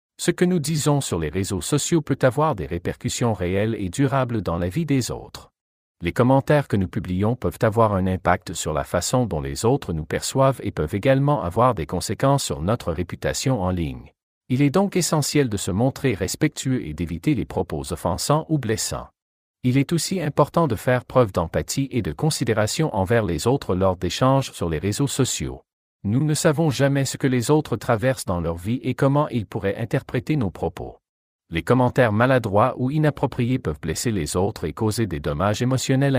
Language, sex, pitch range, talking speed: French, male, 90-140 Hz, 190 wpm